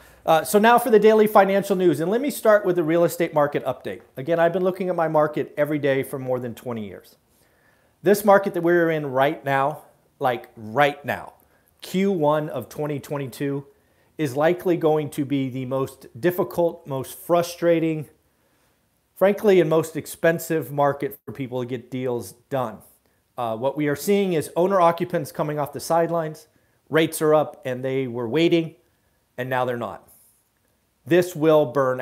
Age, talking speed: 40-59, 170 wpm